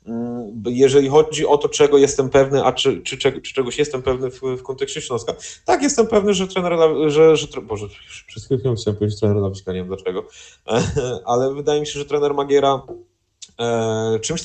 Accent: native